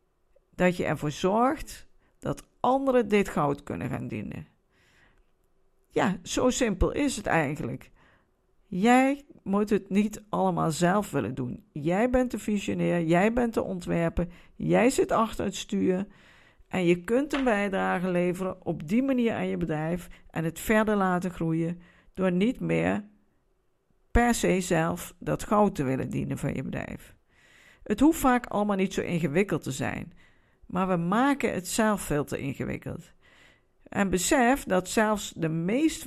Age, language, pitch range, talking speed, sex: 50-69, Dutch, 175-240 Hz, 155 wpm, female